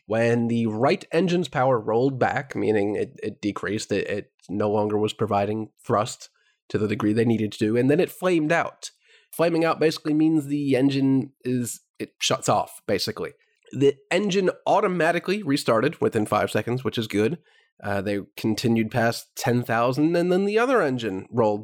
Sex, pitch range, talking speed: male, 110-145 Hz, 170 wpm